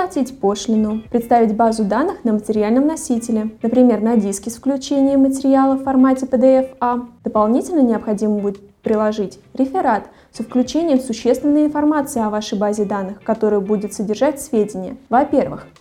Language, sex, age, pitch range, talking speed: Russian, female, 20-39, 215-260 Hz, 135 wpm